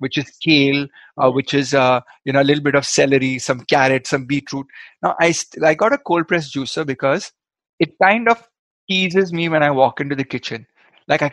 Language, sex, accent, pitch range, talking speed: Hindi, male, native, 135-170 Hz, 215 wpm